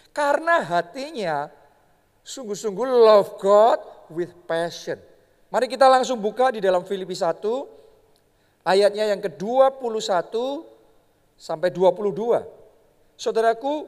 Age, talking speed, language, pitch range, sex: 40-59, 90 wpm, Indonesian, 195-290 Hz, male